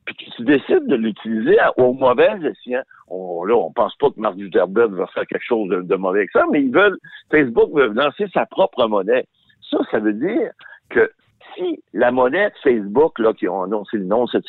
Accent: French